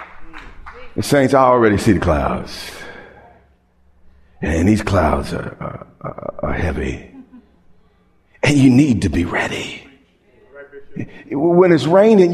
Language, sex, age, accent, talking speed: English, male, 50-69, American, 110 wpm